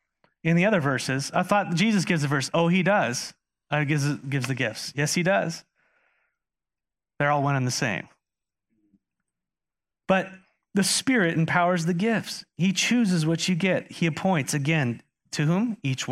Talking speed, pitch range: 170 wpm, 150-205 Hz